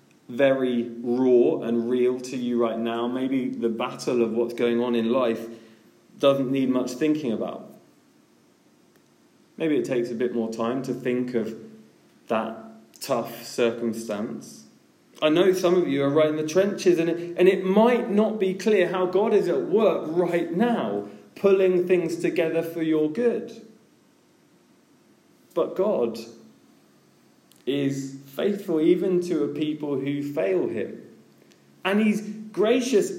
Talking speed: 145 wpm